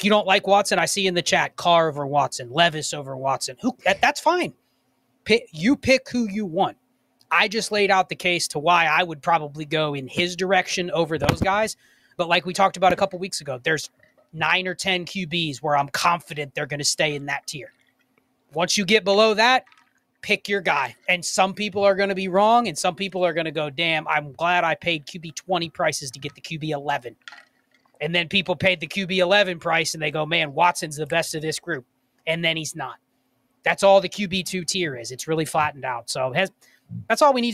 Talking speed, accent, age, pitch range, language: 230 wpm, American, 30-49, 155-195 Hz, English